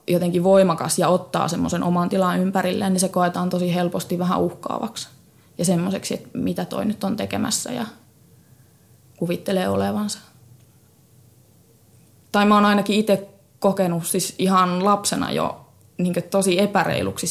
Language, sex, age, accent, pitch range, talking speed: Finnish, female, 20-39, native, 170-195 Hz, 135 wpm